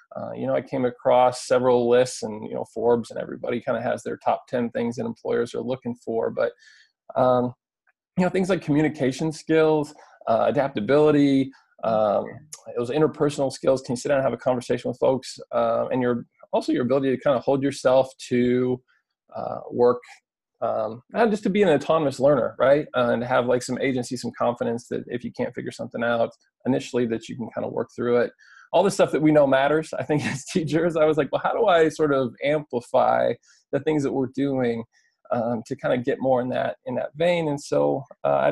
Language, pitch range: English, 125-150 Hz